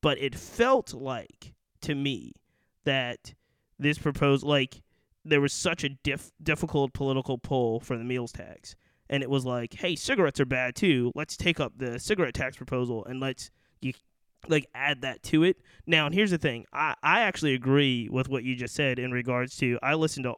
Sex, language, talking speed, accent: male, English, 195 wpm, American